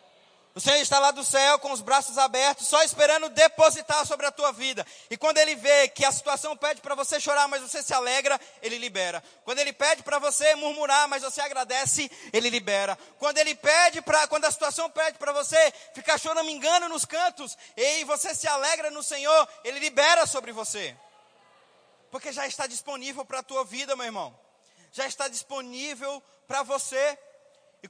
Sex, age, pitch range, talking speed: male, 20-39, 230-290 Hz, 190 wpm